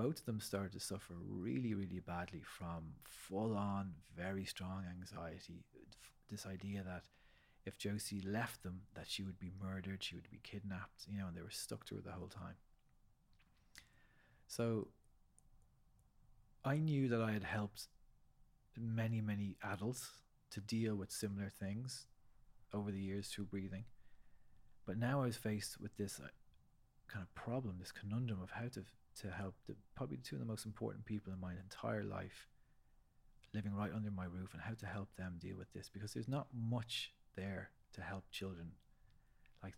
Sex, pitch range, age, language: male, 95-110 Hz, 30-49, English